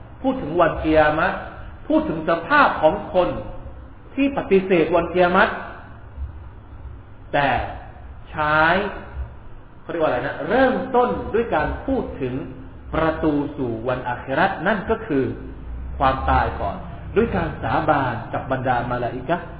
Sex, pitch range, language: male, 115-165 Hz, Thai